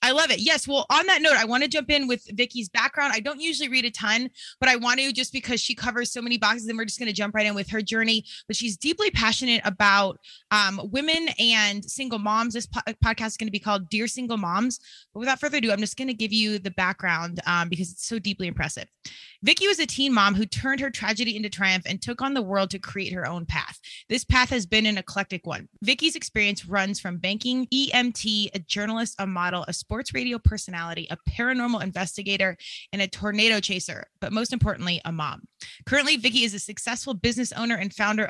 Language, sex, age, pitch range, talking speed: English, female, 20-39, 195-245 Hz, 230 wpm